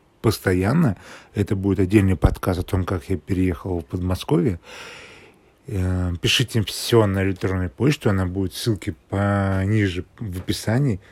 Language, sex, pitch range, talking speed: Russian, male, 95-110 Hz, 125 wpm